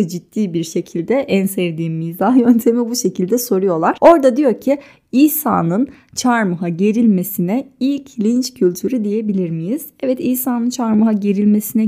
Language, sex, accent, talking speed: Turkish, female, native, 125 wpm